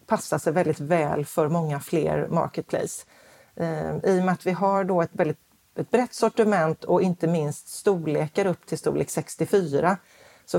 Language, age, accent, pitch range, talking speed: Swedish, 40-59, native, 155-185 Hz, 170 wpm